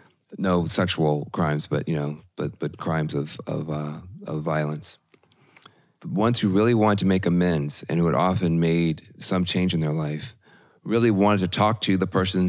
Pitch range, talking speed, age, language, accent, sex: 80-90 Hz, 185 wpm, 40-59, English, American, male